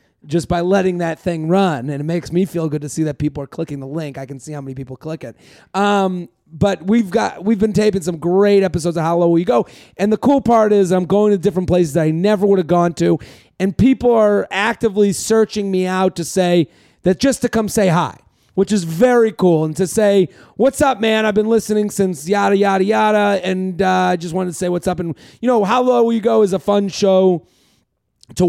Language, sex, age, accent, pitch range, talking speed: English, male, 30-49, American, 165-200 Hz, 240 wpm